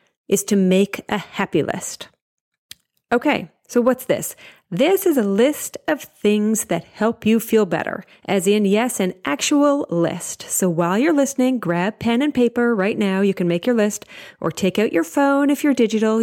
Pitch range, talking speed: 190-250 Hz, 185 wpm